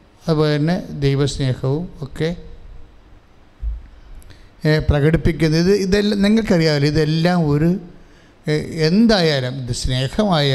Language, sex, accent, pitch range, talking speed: English, male, Indian, 120-165 Hz, 125 wpm